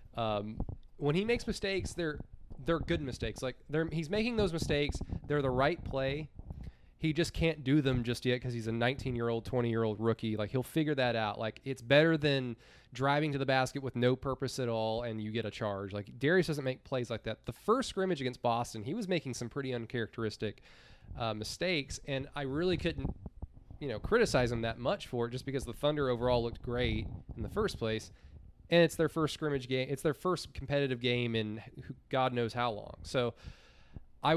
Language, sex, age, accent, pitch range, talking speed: English, male, 20-39, American, 115-145 Hz, 210 wpm